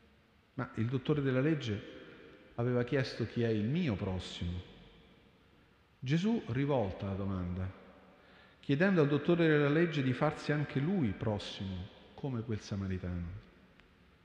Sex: male